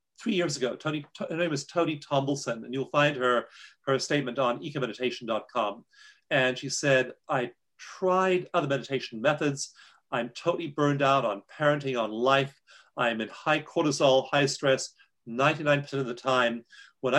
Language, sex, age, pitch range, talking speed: English, male, 40-59, 125-155 Hz, 155 wpm